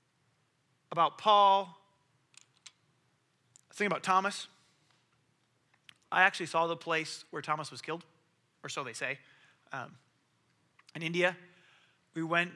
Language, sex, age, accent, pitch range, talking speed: English, male, 30-49, American, 145-180 Hz, 110 wpm